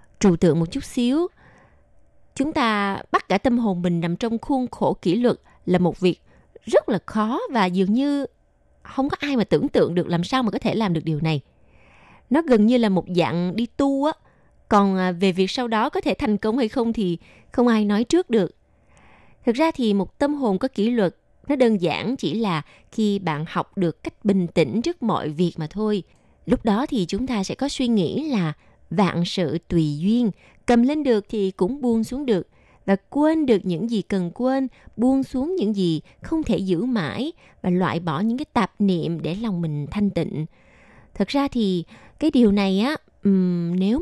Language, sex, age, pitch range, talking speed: Vietnamese, female, 20-39, 175-245 Hz, 210 wpm